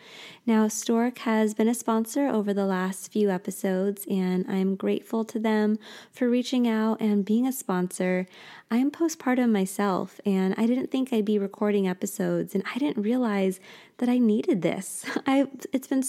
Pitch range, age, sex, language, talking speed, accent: 185-225 Hz, 20-39, female, English, 165 wpm, American